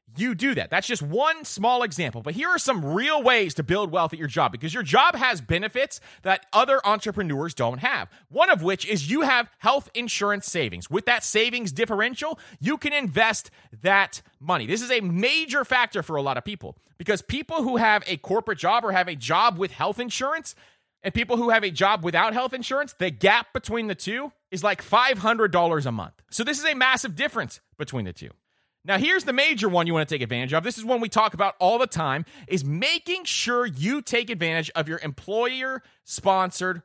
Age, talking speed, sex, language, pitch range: 30-49, 210 wpm, male, English, 160-245 Hz